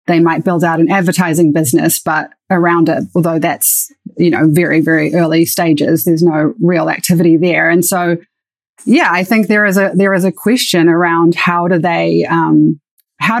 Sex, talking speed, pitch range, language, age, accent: female, 185 wpm, 165-190 Hz, English, 30-49, Australian